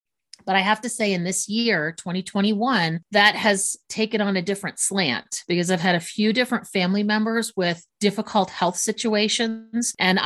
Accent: American